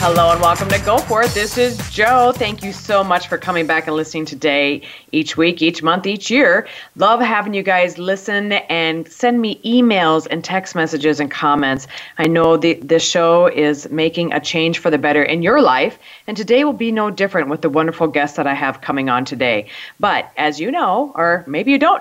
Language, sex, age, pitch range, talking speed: English, female, 40-59, 160-200 Hz, 220 wpm